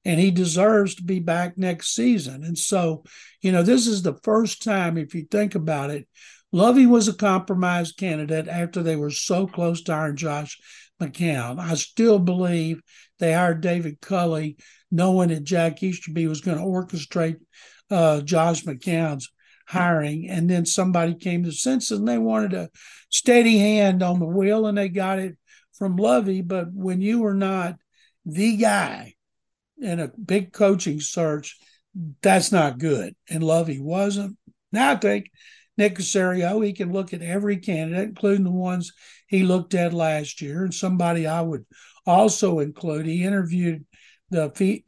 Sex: male